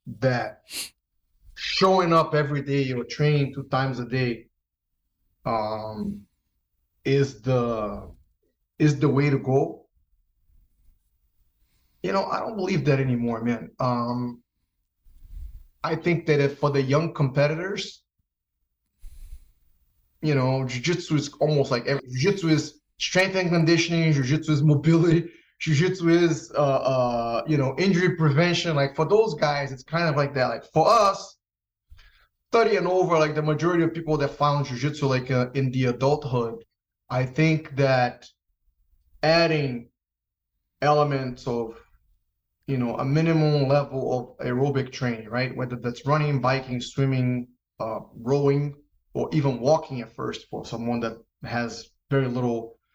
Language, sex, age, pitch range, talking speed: English, male, 20-39, 115-150 Hz, 135 wpm